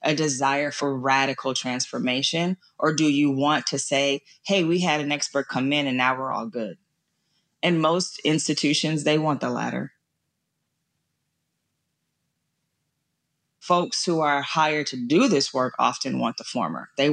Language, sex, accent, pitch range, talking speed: English, female, American, 140-170 Hz, 150 wpm